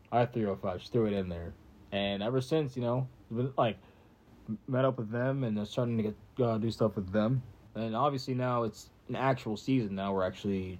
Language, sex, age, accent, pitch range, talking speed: English, male, 20-39, American, 100-125 Hz, 195 wpm